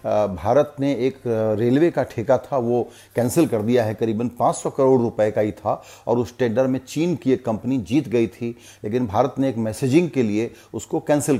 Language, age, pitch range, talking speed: Hindi, 40-59, 115-145 Hz, 205 wpm